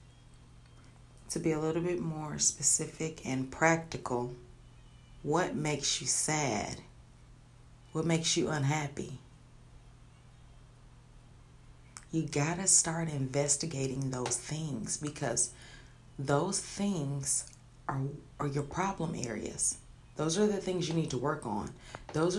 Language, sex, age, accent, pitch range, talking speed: English, female, 30-49, American, 125-165 Hz, 115 wpm